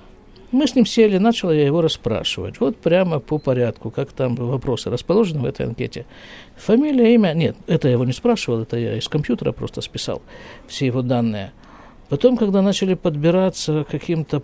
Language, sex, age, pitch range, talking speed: Russian, male, 50-69, 120-160 Hz, 175 wpm